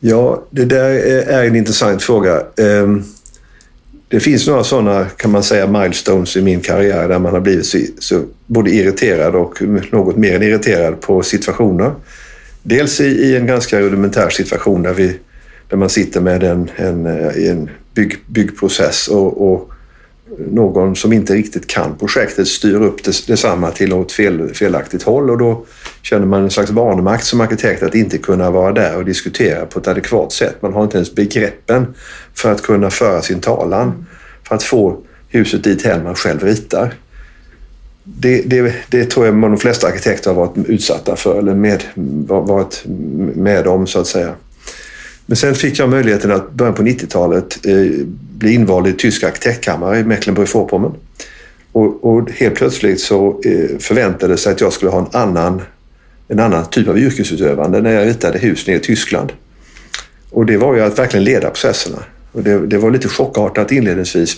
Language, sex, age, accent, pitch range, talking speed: Swedish, male, 50-69, native, 95-115 Hz, 175 wpm